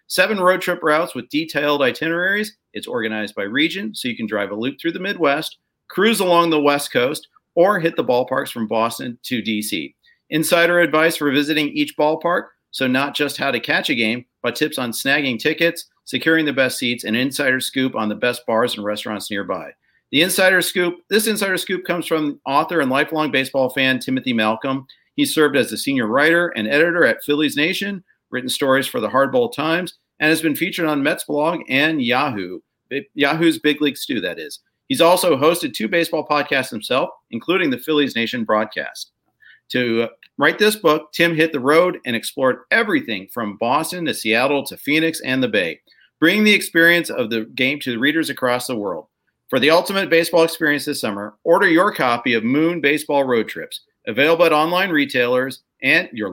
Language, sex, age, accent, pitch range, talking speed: English, male, 40-59, American, 130-170 Hz, 190 wpm